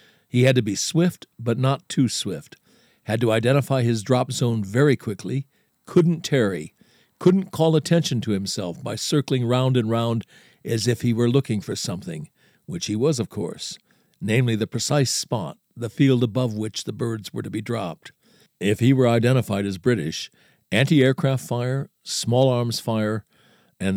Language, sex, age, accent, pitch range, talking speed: English, male, 60-79, American, 110-135 Hz, 165 wpm